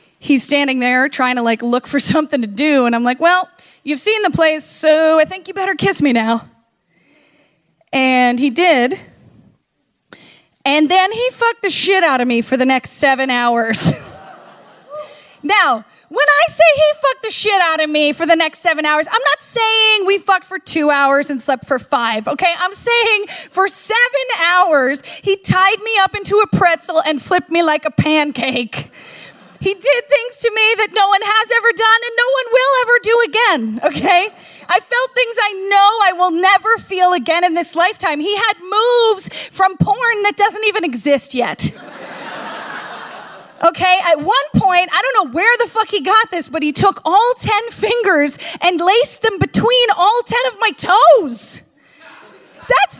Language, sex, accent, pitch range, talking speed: English, female, American, 290-430 Hz, 185 wpm